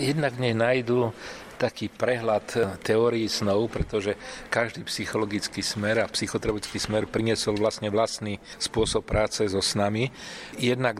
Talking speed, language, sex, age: 115 wpm, Slovak, male, 40-59